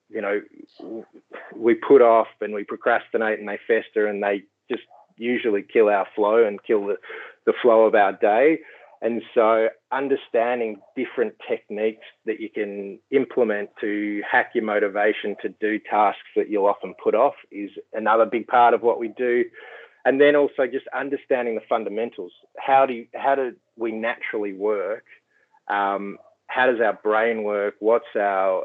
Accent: Australian